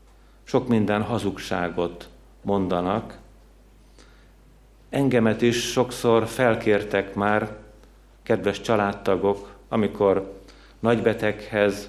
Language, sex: Hungarian, male